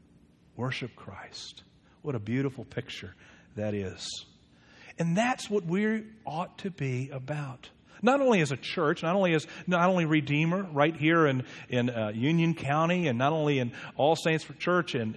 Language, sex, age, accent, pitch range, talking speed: English, male, 50-69, American, 120-165 Hz, 165 wpm